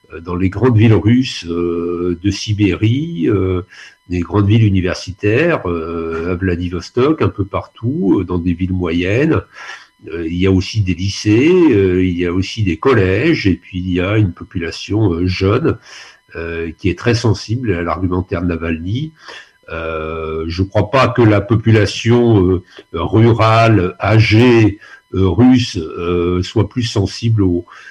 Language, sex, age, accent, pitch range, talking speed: French, male, 50-69, French, 90-115 Hz, 130 wpm